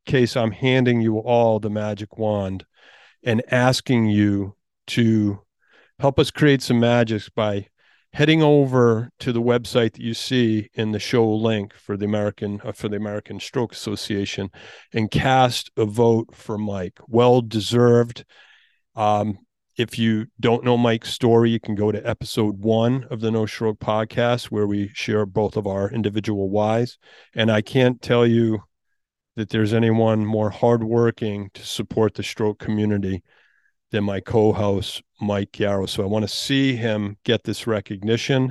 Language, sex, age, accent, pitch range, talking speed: English, male, 40-59, American, 105-120 Hz, 155 wpm